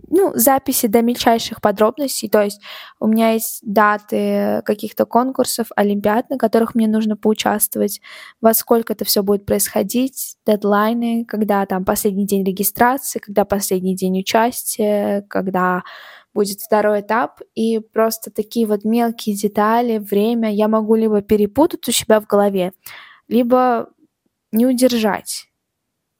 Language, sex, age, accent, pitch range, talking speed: Russian, female, 10-29, native, 215-255 Hz, 130 wpm